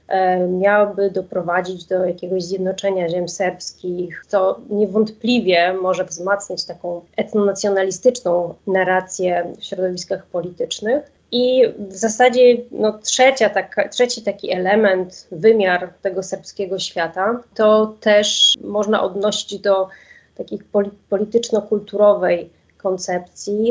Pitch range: 185-210 Hz